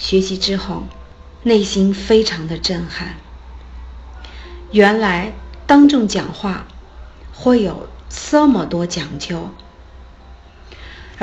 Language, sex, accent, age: Chinese, female, native, 50-69